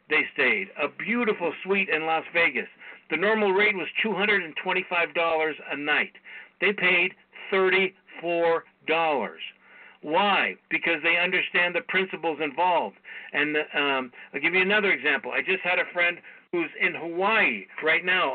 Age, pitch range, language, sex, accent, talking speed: 60-79, 155-185 Hz, English, male, American, 145 wpm